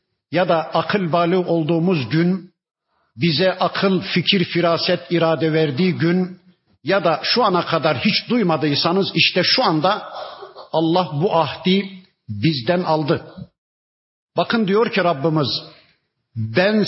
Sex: male